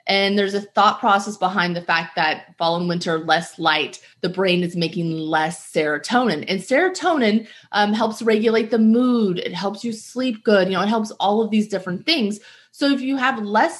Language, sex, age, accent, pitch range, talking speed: English, female, 30-49, American, 170-225 Hz, 200 wpm